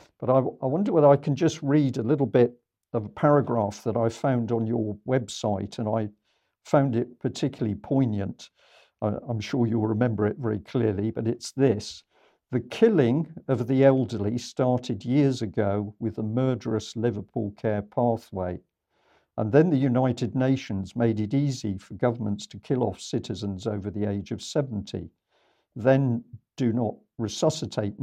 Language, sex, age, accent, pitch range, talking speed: English, male, 50-69, British, 105-130 Hz, 160 wpm